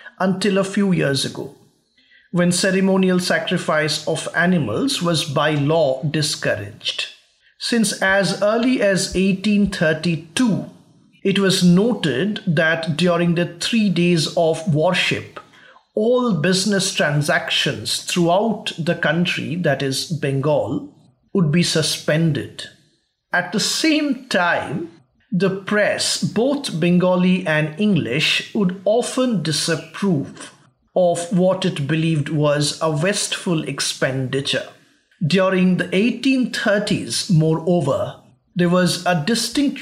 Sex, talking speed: male, 105 wpm